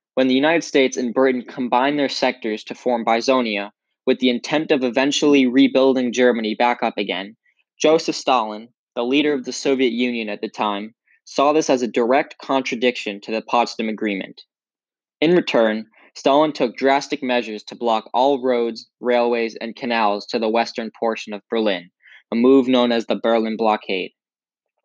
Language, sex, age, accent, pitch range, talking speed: English, male, 10-29, American, 115-135 Hz, 165 wpm